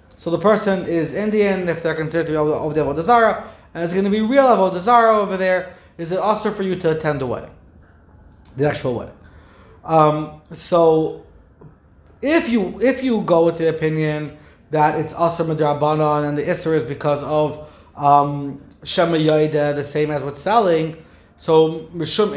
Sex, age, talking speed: male, 30-49, 175 wpm